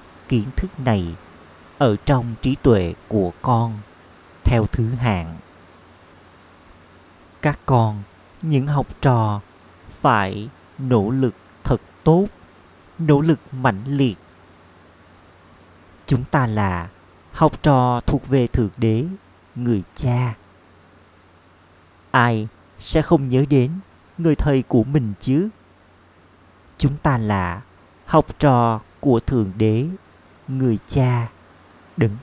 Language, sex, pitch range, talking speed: Vietnamese, male, 90-130 Hz, 110 wpm